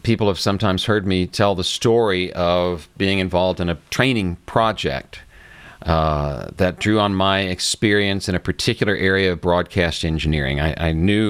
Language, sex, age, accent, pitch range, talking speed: English, male, 50-69, American, 90-120 Hz, 165 wpm